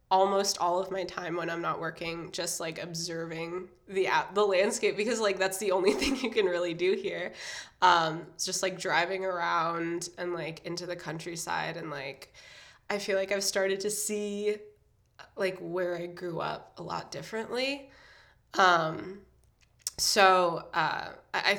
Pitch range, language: 175-210 Hz, English